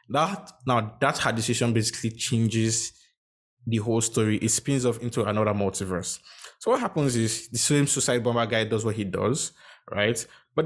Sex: male